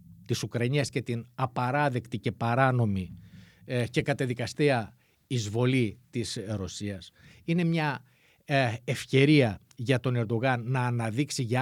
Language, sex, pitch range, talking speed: Greek, male, 120-165 Hz, 120 wpm